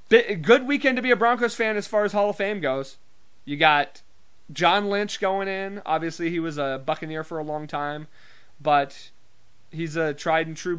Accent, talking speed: American, 185 wpm